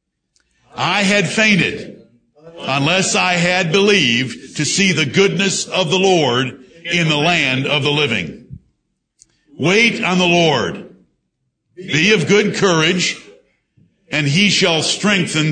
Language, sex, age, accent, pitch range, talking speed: English, male, 60-79, American, 145-180 Hz, 125 wpm